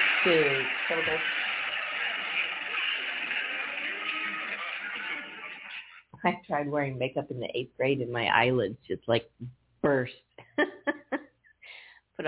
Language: English